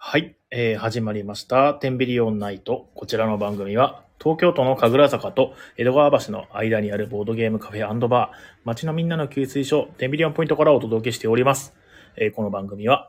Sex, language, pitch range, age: male, Japanese, 105-140 Hz, 30-49